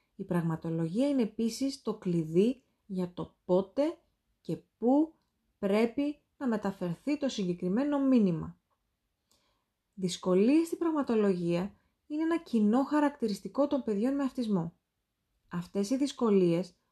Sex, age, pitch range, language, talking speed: female, 30-49, 185-275 Hz, Greek, 110 wpm